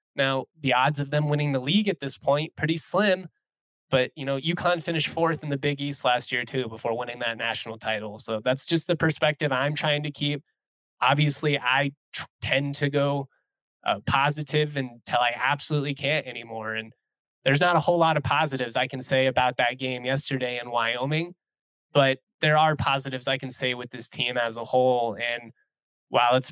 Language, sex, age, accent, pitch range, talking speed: English, male, 20-39, American, 125-145 Hz, 195 wpm